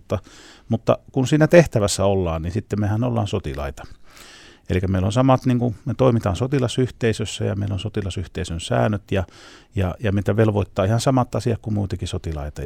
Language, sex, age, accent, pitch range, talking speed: Finnish, male, 30-49, native, 90-110 Hz, 165 wpm